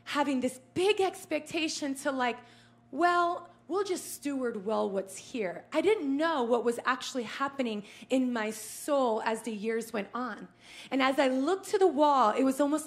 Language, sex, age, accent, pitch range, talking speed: English, female, 20-39, American, 225-300 Hz, 175 wpm